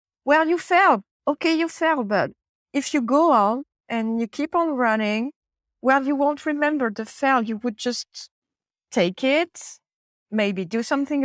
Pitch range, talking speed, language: 205-280 Hz, 160 wpm, English